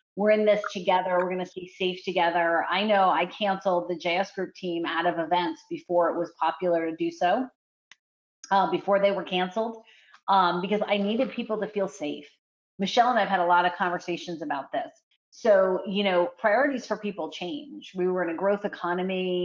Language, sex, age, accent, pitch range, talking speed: English, female, 30-49, American, 170-205 Hz, 195 wpm